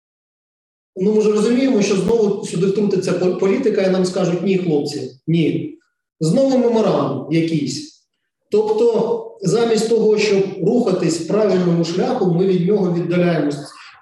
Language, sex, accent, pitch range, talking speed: Ukrainian, male, native, 165-210 Hz, 125 wpm